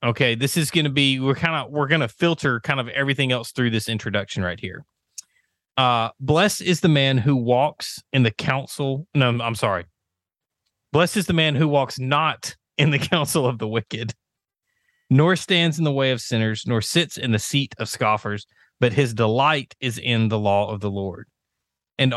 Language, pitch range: English, 110-145 Hz